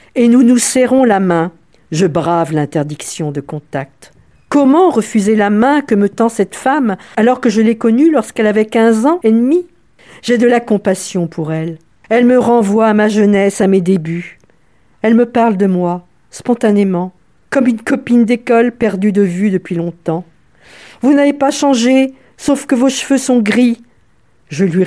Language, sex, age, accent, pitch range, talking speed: French, female, 50-69, French, 160-235 Hz, 175 wpm